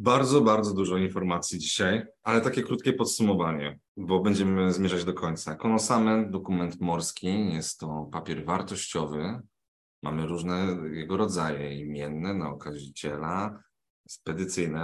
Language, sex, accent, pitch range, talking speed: Polish, male, native, 80-105 Hz, 115 wpm